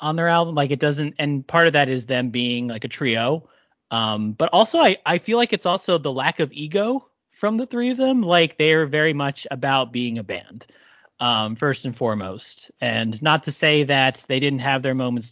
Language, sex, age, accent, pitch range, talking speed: English, male, 30-49, American, 125-160 Hz, 225 wpm